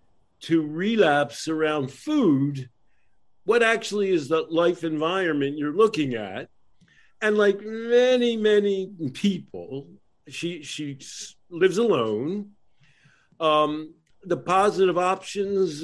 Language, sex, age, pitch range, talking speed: English, male, 50-69, 145-195 Hz, 100 wpm